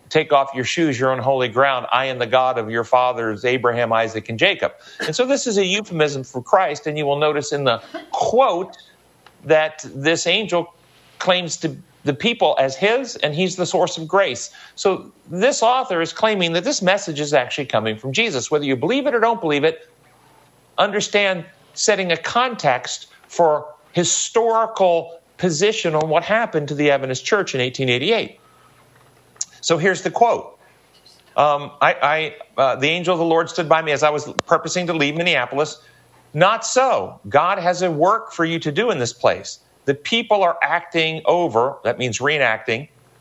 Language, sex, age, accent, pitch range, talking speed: English, male, 50-69, American, 135-185 Hz, 180 wpm